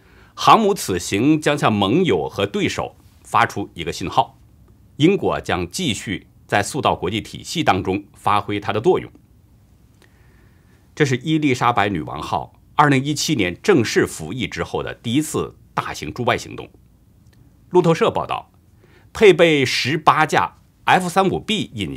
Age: 50-69